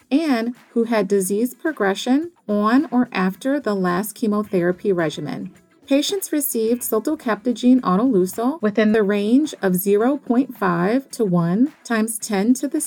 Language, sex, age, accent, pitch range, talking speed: English, female, 30-49, American, 195-260 Hz, 125 wpm